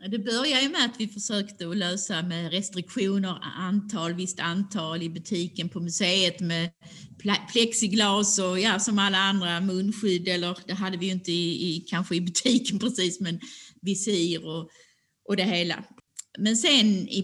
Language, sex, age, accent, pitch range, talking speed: Swedish, female, 30-49, native, 170-220 Hz, 165 wpm